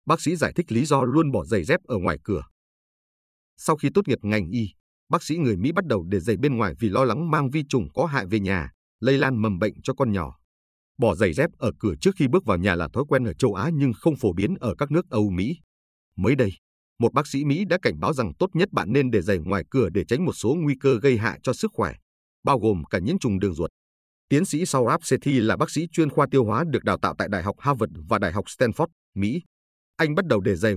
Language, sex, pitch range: Vietnamese, male, 95-140 Hz